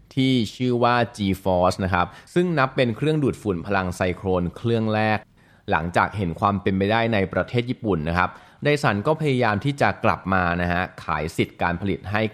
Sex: male